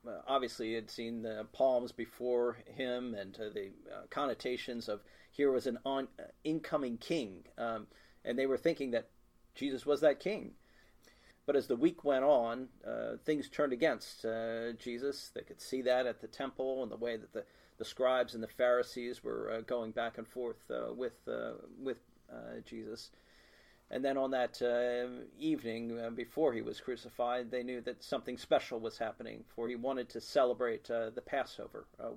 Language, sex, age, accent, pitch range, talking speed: English, male, 40-59, American, 115-130 Hz, 180 wpm